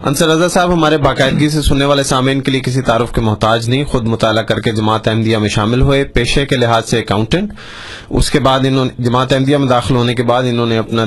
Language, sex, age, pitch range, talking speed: Urdu, male, 30-49, 115-135 Hz, 240 wpm